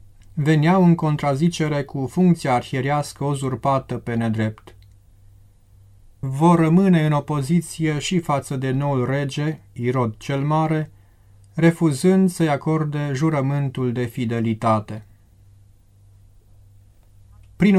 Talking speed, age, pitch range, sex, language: 95 wpm, 30-49, 110-155 Hz, male, Romanian